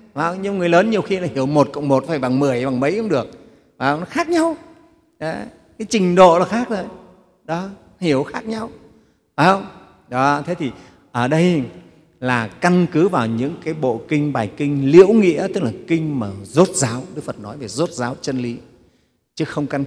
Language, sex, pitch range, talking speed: Vietnamese, male, 125-180 Hz, 200 wpm